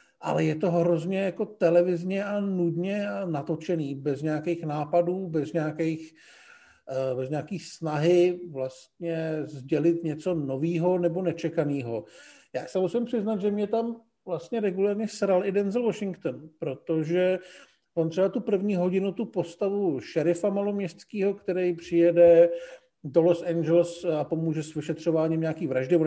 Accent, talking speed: native, 135 wpm